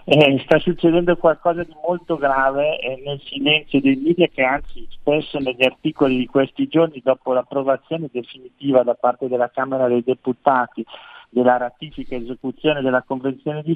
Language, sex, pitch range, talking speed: Italian, male, 130-155 Hz, 155 wpm